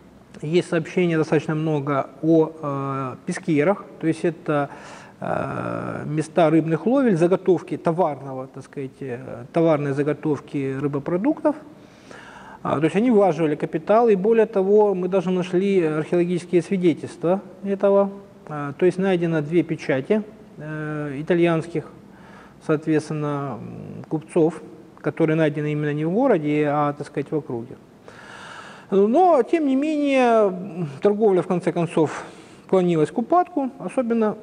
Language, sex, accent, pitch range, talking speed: Russian, male, native, 155-215 Hz, 120 wpm